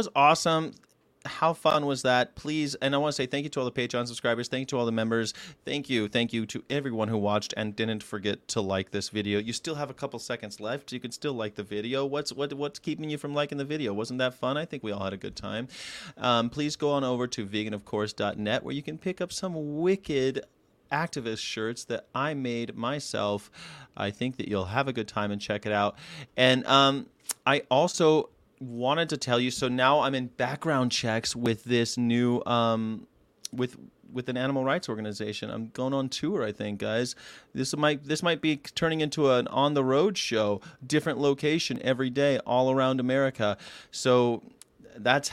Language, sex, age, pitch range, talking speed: English, male, 30-49, 115-145 Hz, 205 wpm